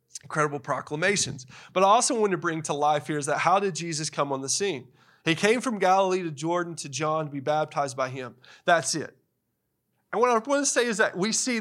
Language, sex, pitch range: English, male, 155-230 Hz